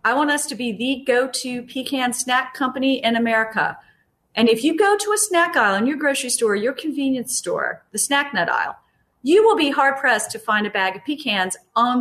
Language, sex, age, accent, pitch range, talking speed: English, female, 40-59, American, 205-295 Hz, 210 wpm